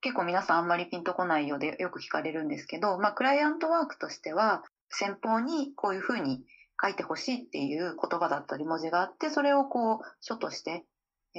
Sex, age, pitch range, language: female, 30-49, 155-230 Hz, Japanese